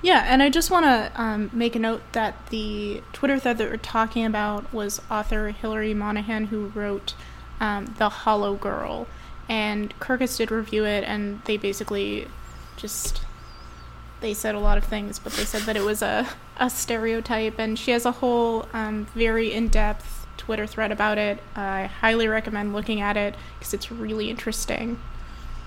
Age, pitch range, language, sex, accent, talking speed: 20-39, 210-235 Hz, English, female, American, 170 wpm